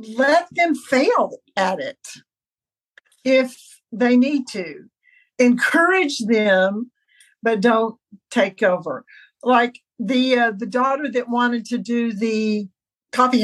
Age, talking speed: 50-69, 115 wpm